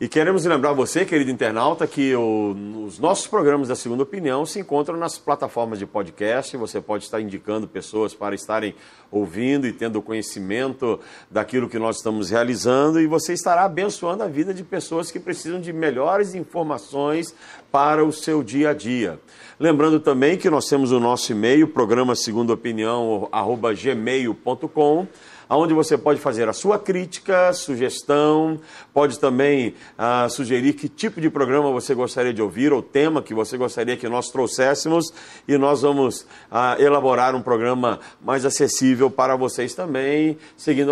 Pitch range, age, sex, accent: 125-160 Hz, 50-69, male, Brazilian